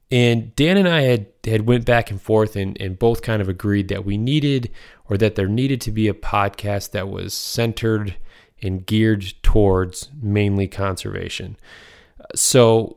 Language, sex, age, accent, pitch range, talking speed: English, male, 20-39, American, 95-110 Hz, 165 wpm